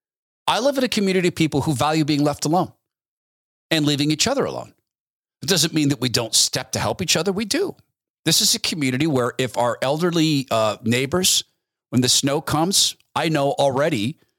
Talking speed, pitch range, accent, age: 195 wpm, 130-180 Hz, American, 40-59